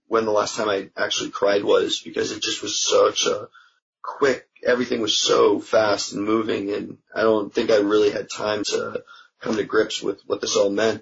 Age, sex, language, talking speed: 20-39, male, English, 205 wpm